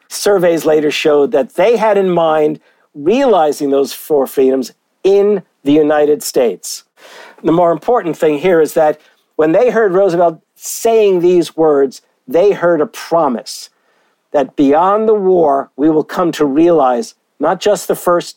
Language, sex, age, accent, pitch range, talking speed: English, male, 50-69, American, 150-205 Hz, 155 wpm